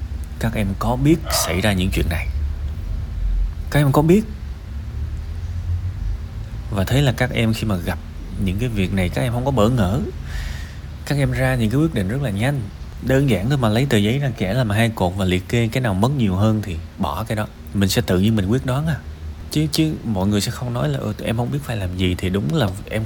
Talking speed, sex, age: 235 wpm, male, 20-39